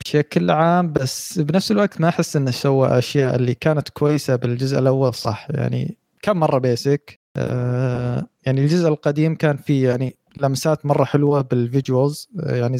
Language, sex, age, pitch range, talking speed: Arabic, male, 20-39, 125-155 Hz, 145 wpm